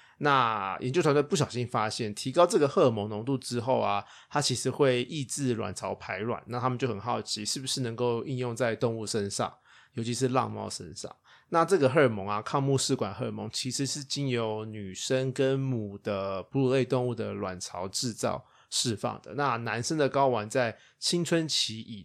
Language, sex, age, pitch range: Chinese, male, 20-39, 110-135 Hz